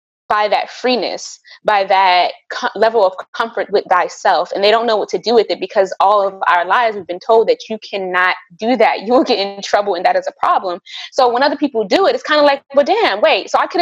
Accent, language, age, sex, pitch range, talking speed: American, English, 20-39, female, 200-295 Hz, 255 wpm